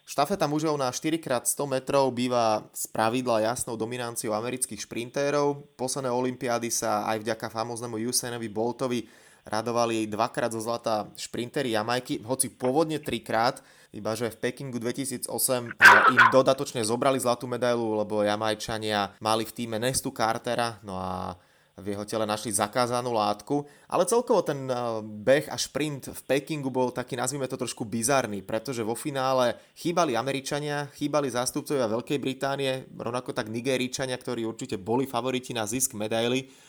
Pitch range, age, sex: 115-140 Hz, 20-39, male